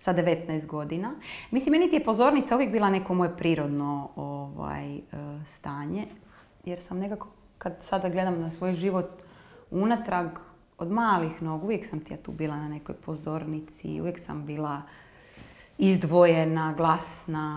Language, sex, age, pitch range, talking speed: Croatian, female, 30-49, 160-210 Hz, 140 wpm